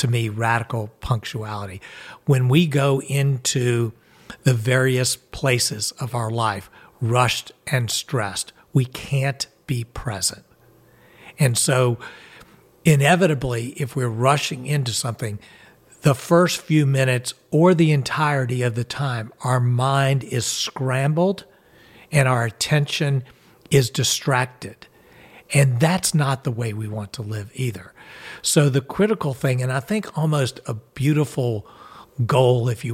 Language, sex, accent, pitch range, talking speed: English, male, American, 115-145 Hz, 130 wpm